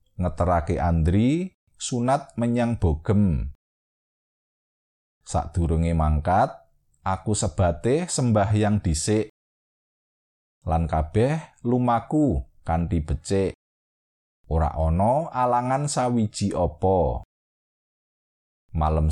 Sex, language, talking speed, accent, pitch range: male, Indonesian, 70 wpm, native, 80-125 Hz